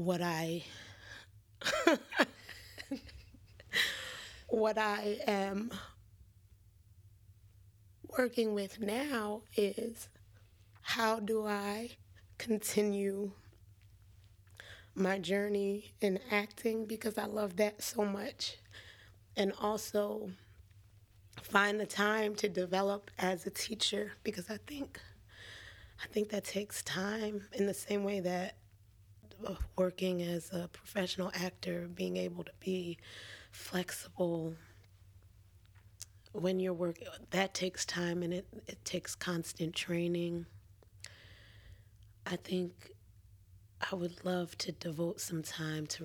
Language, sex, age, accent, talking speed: English, female, 20-39, American, 100 wpm